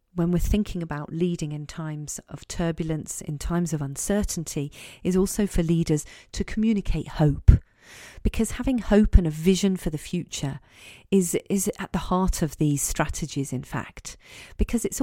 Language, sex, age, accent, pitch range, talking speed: English, female, 40-59, British, 150-200 Hz, 165 wpm